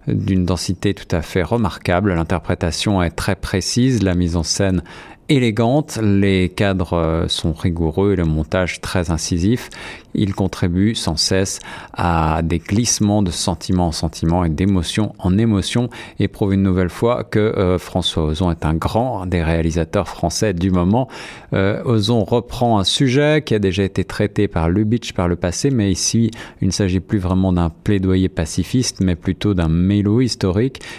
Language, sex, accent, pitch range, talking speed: French, male, French, 90-115 Hz, 165 wpm